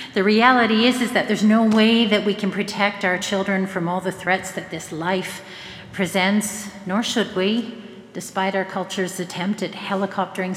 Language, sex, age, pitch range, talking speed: English, female, 40-59, 170-215 Hz, 175 wpm